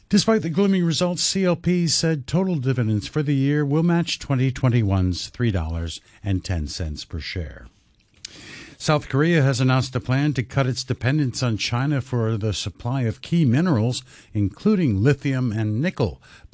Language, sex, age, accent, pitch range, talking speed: English, male, 60-79, American, 100-145 Hz, 150 wpm